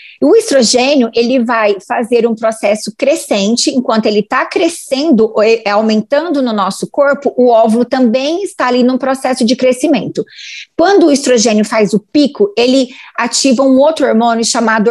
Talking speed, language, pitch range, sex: 150 wpm, Portuguese, 225-290 Hz, female